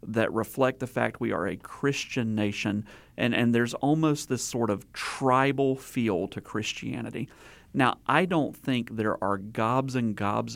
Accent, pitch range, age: American, 105-130 Hz, 40-59